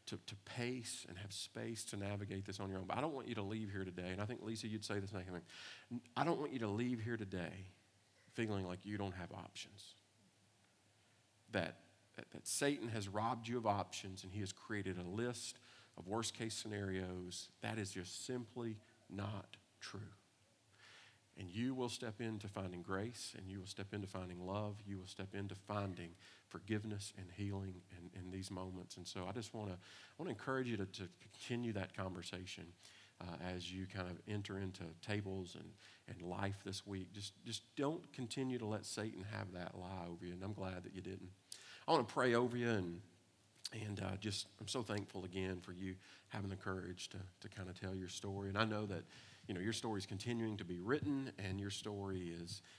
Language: English